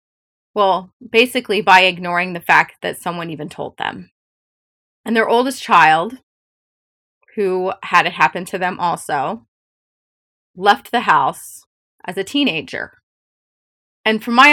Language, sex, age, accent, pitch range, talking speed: English, female, 20-39, American, 185-225 Hz, 130 wpm